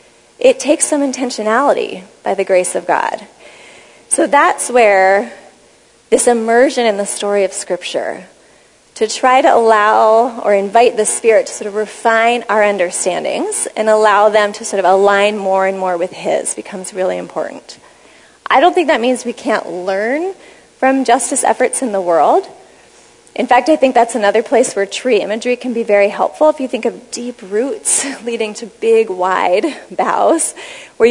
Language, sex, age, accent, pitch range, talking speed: English, female, 30-49, American, 195-255 Hz, 170 wpm